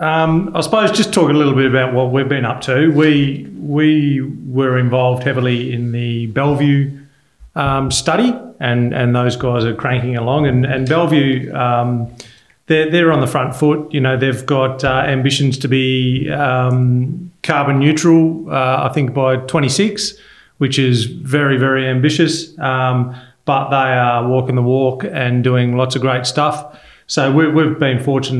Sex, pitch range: male, 125-145 Hz